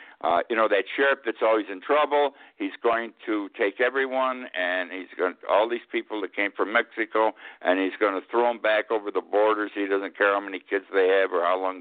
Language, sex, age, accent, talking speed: English, male, 60-79, American, 255 wpm